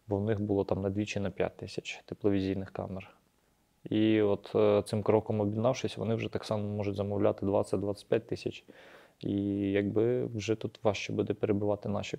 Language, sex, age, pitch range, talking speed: Ukrainian, male, 20-39, 105-115 Hz, 160 wpm